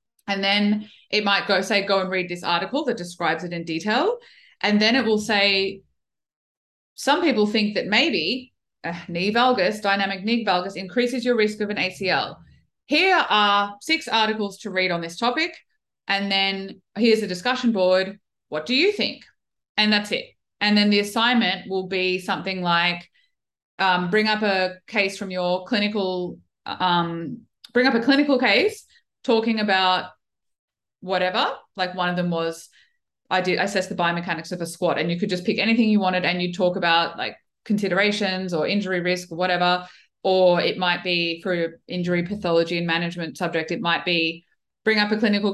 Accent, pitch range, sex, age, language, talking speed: Australian, 180-220 Hz, female, 20-39, English, 175 wpm